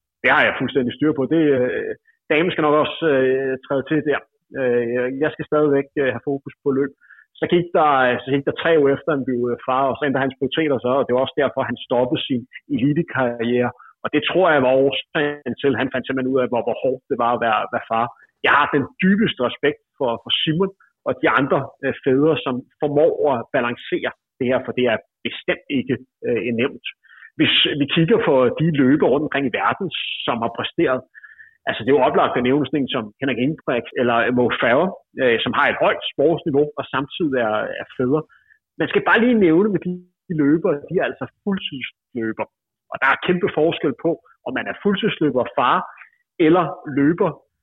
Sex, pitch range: male, 130-165 Hz